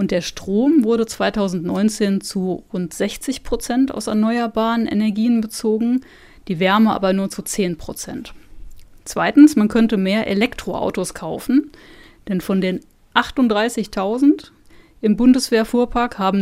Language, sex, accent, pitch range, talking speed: German, female, German, 195-240 Hz, 120 wpm